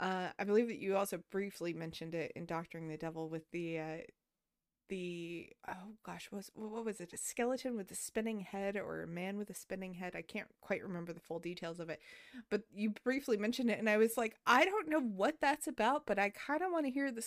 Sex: female